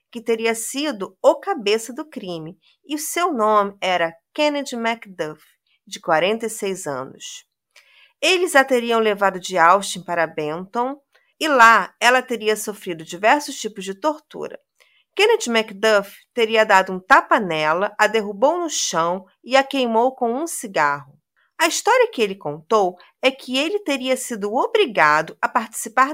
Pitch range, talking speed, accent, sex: 200-300 Hz, 145 wpm, Brazilian, female